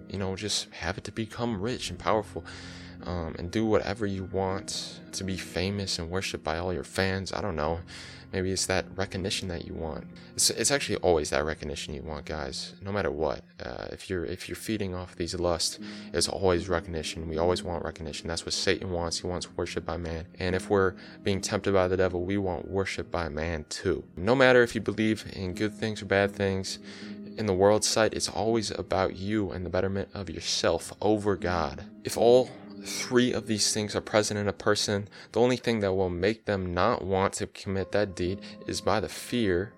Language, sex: English, male